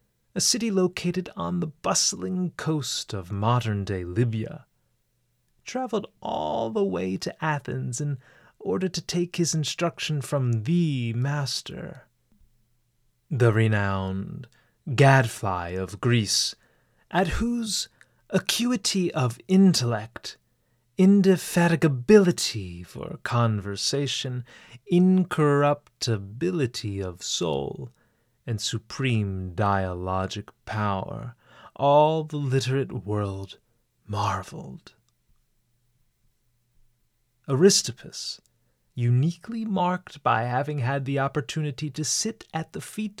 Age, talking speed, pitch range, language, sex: 30-49, 90 wpm, 115-160 Hz, English, male